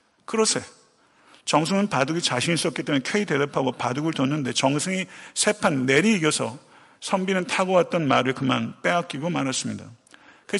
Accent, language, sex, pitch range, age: native, Korean, male, 140-190 Hz, 50-69